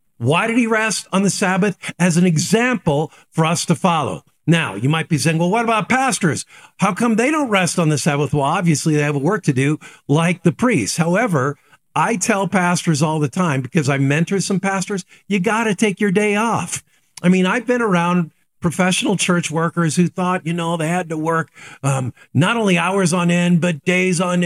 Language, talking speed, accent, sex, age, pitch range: English, 210 wpm, American, male, 50-69, 150-190 Hz